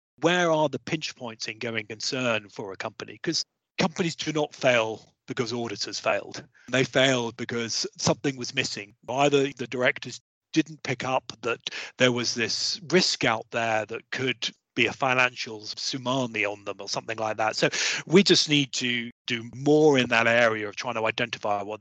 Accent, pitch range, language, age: British, 115-145 Hz, English, 30-49